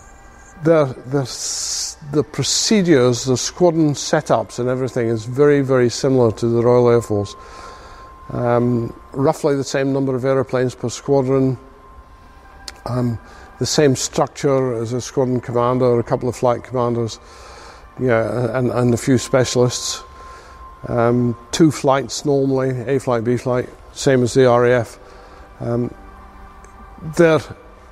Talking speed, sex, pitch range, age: 130 wpm, male, 115-140 Hz, 50-69